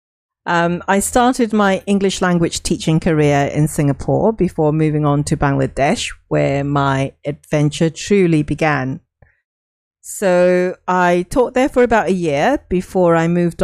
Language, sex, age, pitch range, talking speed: English, female, 40-59, 155-200 Hz, 135 wpm